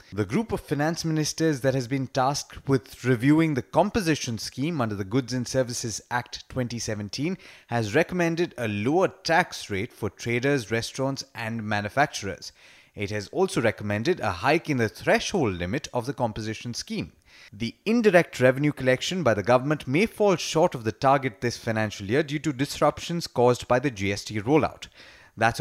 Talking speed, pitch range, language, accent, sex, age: 165 wpm, 115-155 Hz, English, Indian, male, 30-49